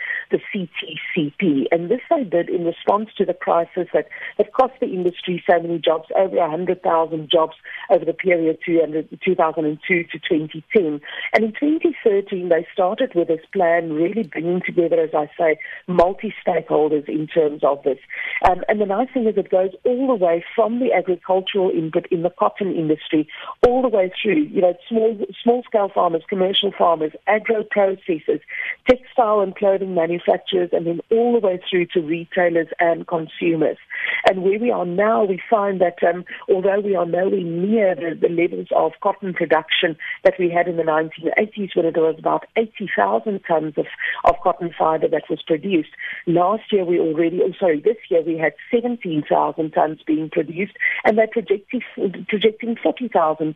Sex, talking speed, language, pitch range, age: female, 170 wpm, English, 165-210 Hz, 50-69